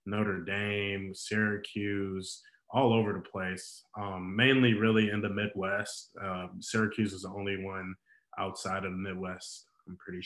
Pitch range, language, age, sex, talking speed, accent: 95-115 Hz, English, 20-39, male, 145 wpm, American